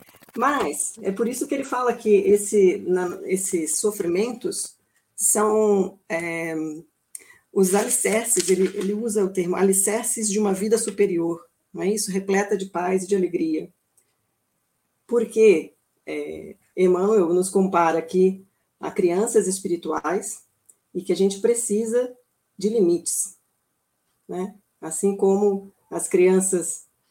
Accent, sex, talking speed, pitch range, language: Brazilian, female, 125 wpm, 180-220 Hz, Portuguese